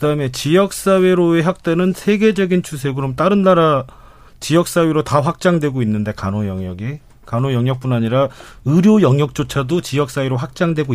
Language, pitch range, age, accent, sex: Korean, 125-175 Hz, 40-59, native, male